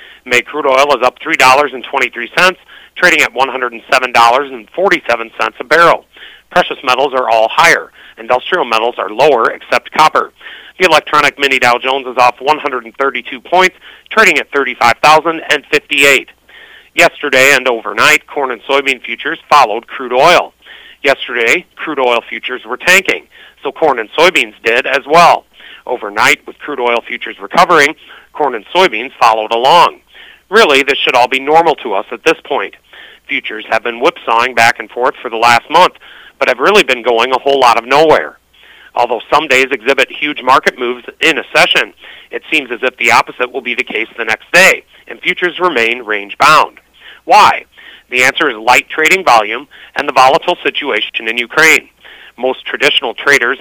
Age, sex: 40-59, male